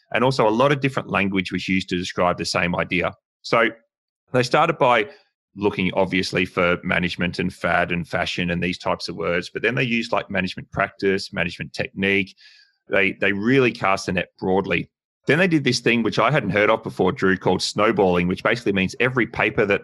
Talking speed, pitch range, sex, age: 205 wpm, 90-105 Hz, male, 30-49